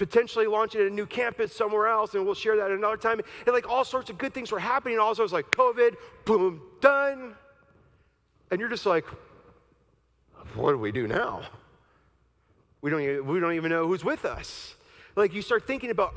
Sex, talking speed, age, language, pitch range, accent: male, 195 wpm, 40-59, English, 200-255 Hz, American